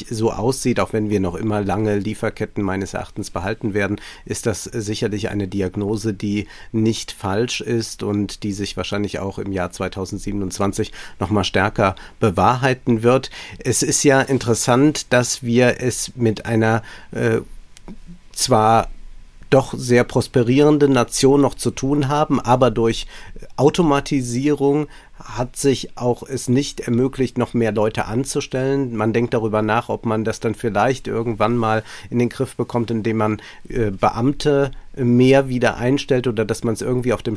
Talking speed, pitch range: 155 wpm, 110-130 Hz